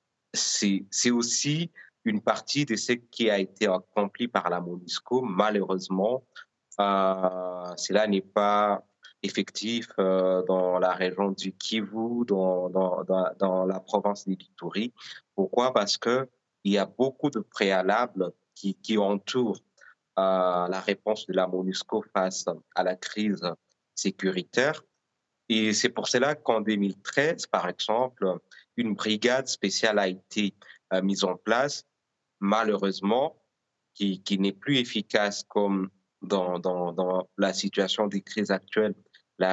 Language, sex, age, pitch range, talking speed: French, male, 30-49, 95-110 Hz, 135 wpm